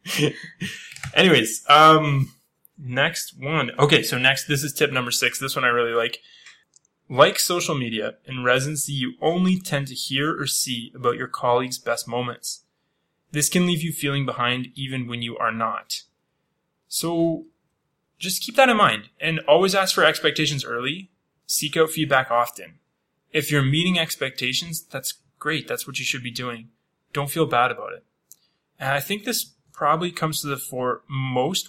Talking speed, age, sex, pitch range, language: 165 wpm, 20-39, male, 125-160 Hz, English